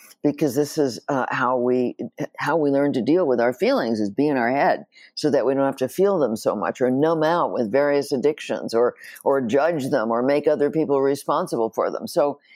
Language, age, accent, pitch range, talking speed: English, 60-79, American, 125-165 Hz, 225 wpm